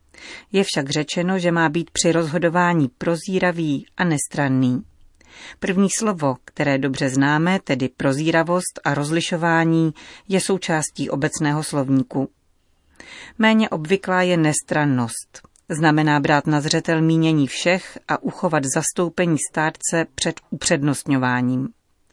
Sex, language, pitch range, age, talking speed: female, Czech, 145-175 Hz, 40-59, 110 wpm